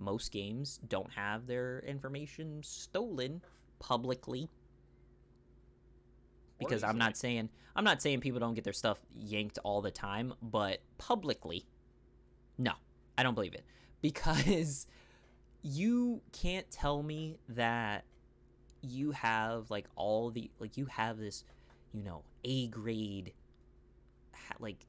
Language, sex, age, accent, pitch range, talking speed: English, male, 20-39, American, 105-140 Hz, 125 wpm